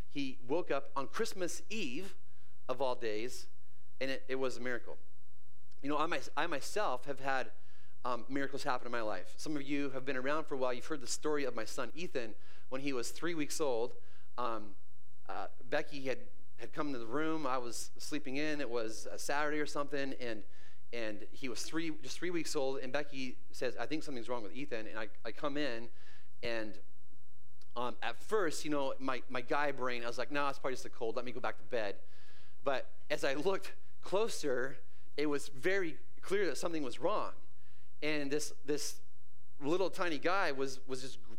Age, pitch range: 30-49, 120-145 Hz